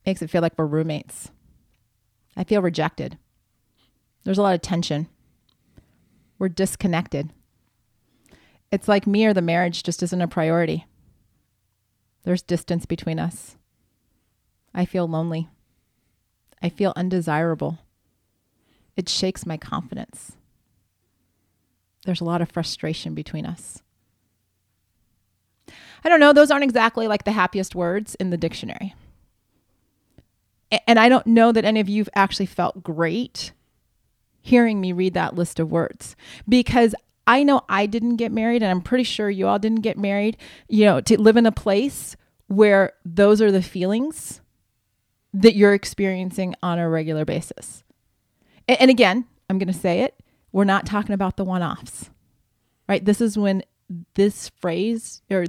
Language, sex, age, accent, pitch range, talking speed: English, female, 30-49, American, 150-205 Hz, 145 wpm